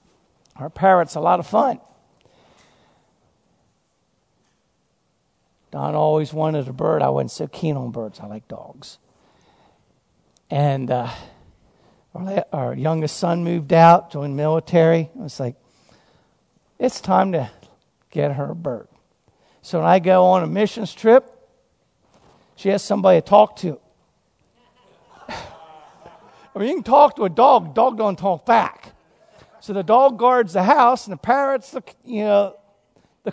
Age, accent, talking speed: 50-69, American, 140 wpm